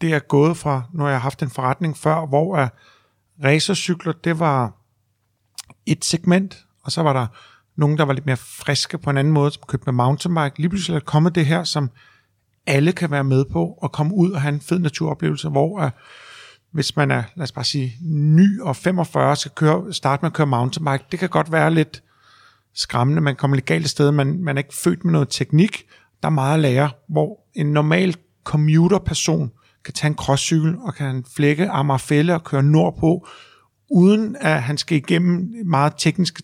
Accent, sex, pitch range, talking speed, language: native, male, 140-165 Hz, 200 wpm, Danish